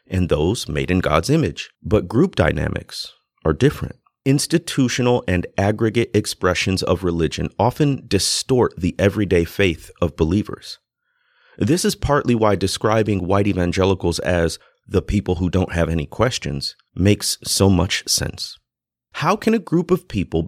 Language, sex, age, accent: English, male, 30-49, American